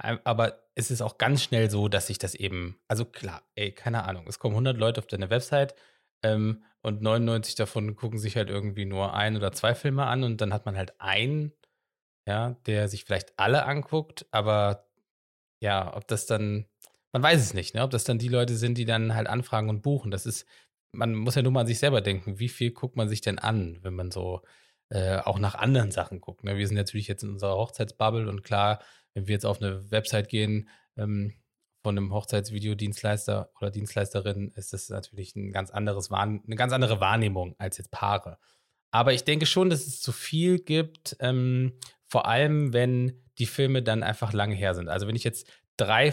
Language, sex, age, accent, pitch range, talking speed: German, male, 20-39, German, 100-125 Hz, 205 wpm